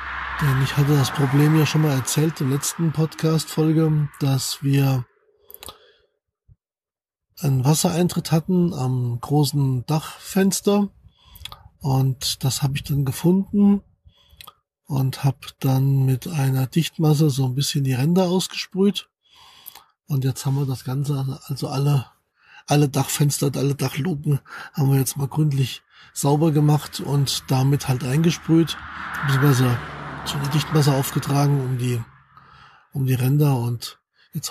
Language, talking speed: German, 125 wpm